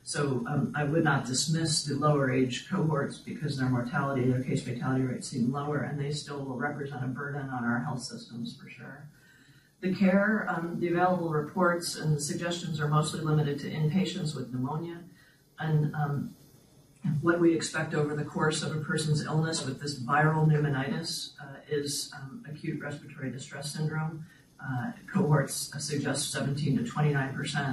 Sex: female